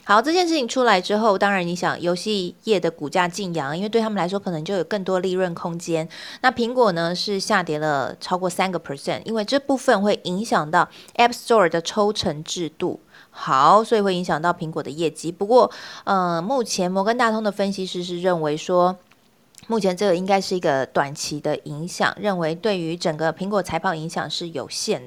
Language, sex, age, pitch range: Chinese, female, 20-39, 175-235 Hz